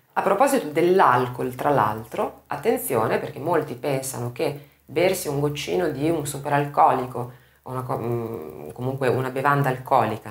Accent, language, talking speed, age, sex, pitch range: native, Italian, 120 wpm, 30-49, female, 125-150 Hz